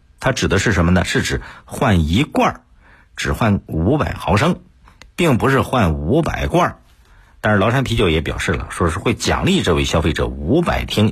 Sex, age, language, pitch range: male, 50-69, Chinese, 85-135 Hz